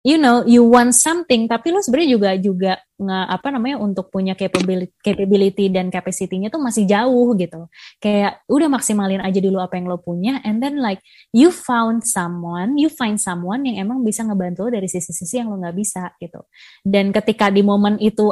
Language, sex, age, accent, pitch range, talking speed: English, female, 20-39, Indonesian, 185-235 Hz, 190 wpm